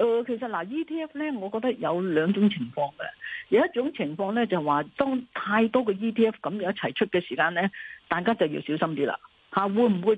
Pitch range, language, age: 175-240 Hz, Chinese, 40-59